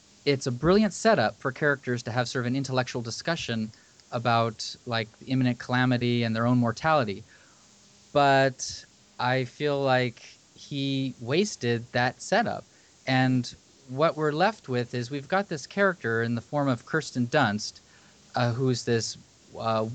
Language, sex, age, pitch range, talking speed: English, male, 30-49, 120-155 Hz, 150 wpm